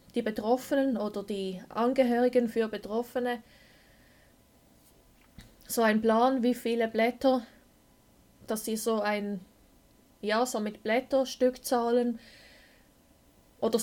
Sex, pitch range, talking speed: female, 215-250 Hz, 105 wpm